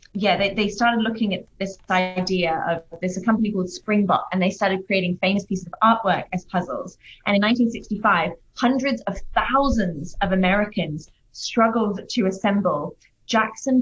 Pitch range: 185-225 Hz